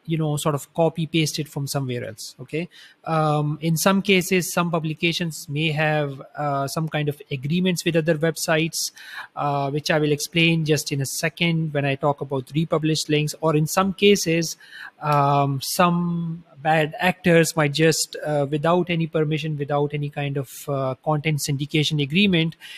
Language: English